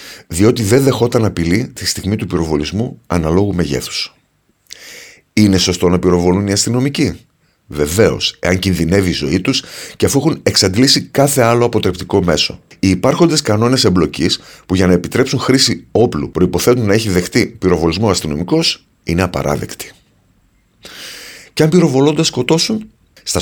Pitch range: 85-125 Hz